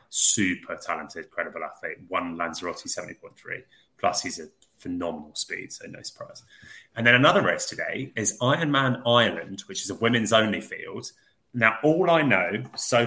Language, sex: English, male